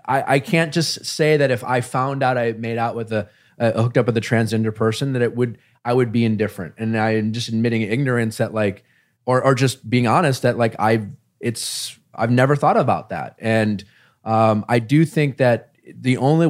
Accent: American